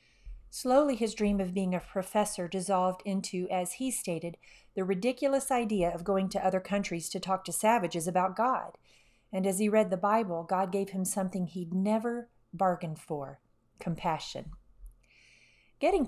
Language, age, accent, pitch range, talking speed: English, 40-59, American, 175-220 Hz, 155 wpm